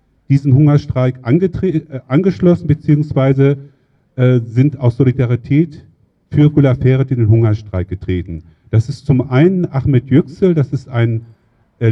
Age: 50-69